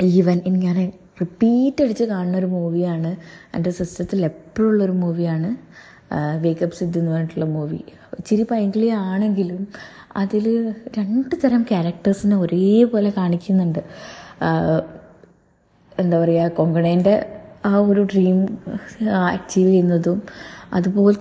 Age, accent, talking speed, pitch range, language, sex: 20-39, native, 95 wpm, 175-225 Hz, Malayalam, female